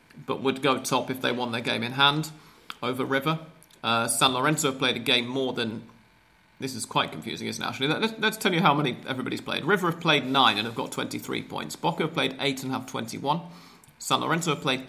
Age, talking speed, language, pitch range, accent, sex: 40-59, 230 wpm, English, 125-145 Hz, British, male